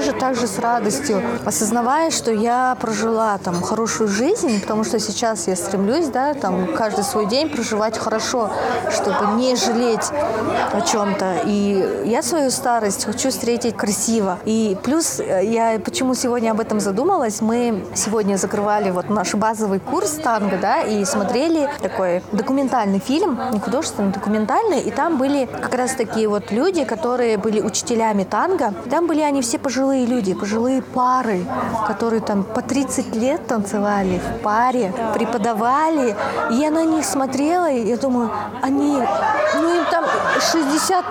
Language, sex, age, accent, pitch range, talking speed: Russian, female, 20-39, native, 220-285 Hz, 145 wpm